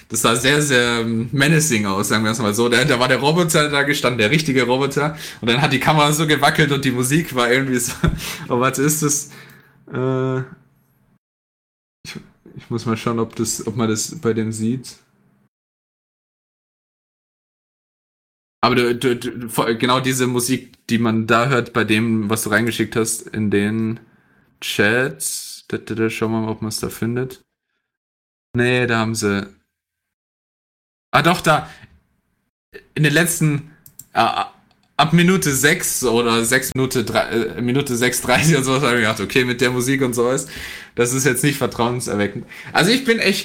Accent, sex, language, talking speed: German, male, German, 165 wpm